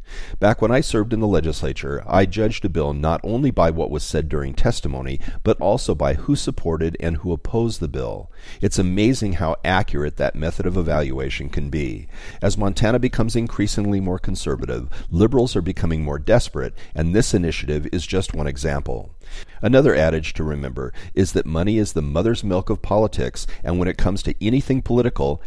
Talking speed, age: 180 wpm, 40-59